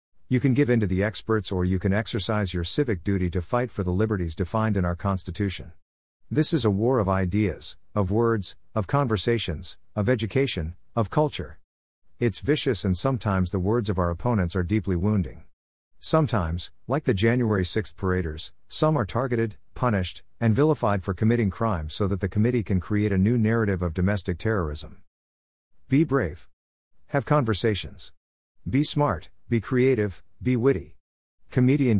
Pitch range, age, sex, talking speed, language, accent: 90-115 Hz, 50-69, male, 165 wpm, English, American